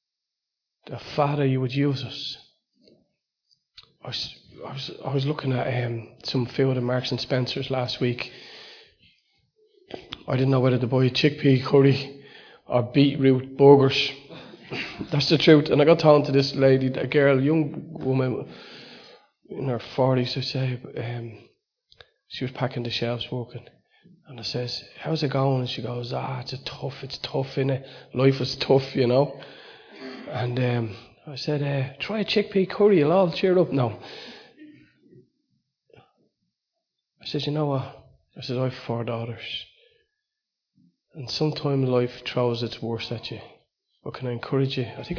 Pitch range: 125-150 Hz